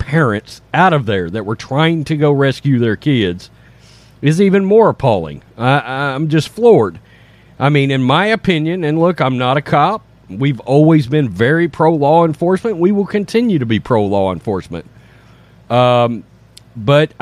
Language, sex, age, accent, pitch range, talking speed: English, male, 40-59, American, 125-175 Hz, 155 wpm